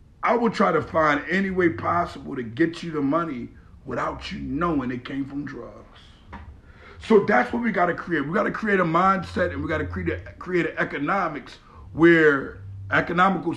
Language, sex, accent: English, male, American